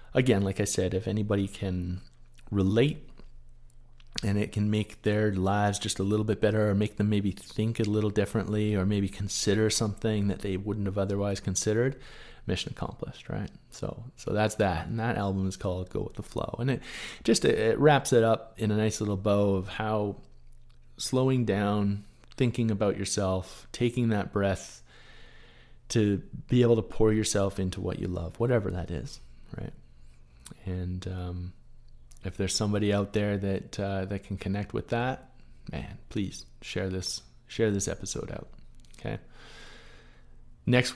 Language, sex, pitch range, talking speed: English, male, 95-115 Hz, 165 wpm